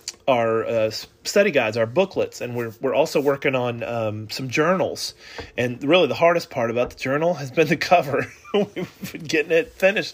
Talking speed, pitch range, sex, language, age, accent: 190 wpm, 130-180 Hz, male, English, 30-49, American